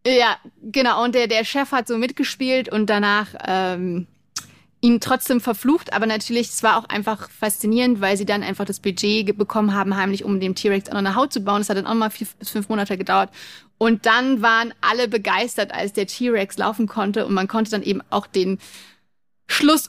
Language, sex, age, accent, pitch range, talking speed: German, female, 30-49, German, 200-235 Hz, 205 wpm